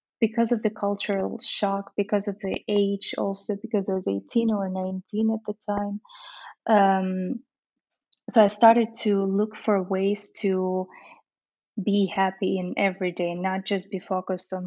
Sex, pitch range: female, 185-215 Hz